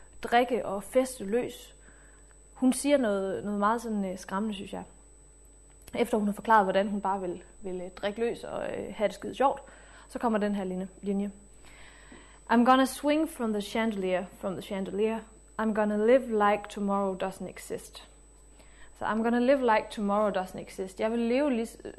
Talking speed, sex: 185 wpm, female